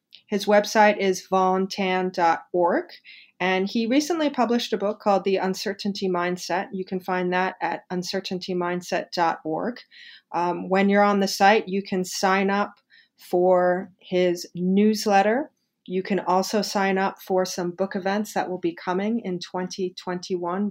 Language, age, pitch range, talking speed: English, 30-49, 180-210 Hz, 135 wpm